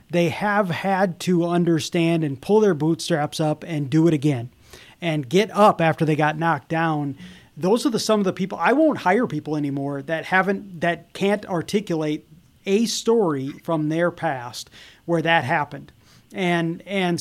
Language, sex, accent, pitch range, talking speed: English, male, American, 150-185 Hz, 170 wpm